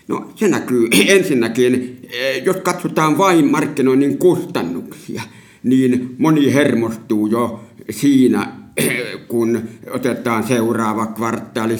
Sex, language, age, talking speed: male, Finnish, 60-79, 90 wpm